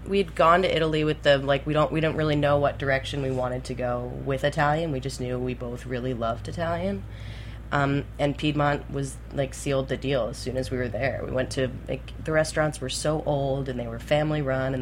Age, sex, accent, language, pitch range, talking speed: 20-39, female, American, English, 125-145 Hz, 235 wpm